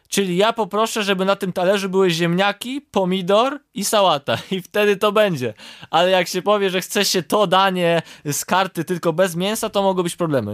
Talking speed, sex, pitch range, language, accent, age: 195 wpm, male, 150-190 Hz, Polish, native, 20-39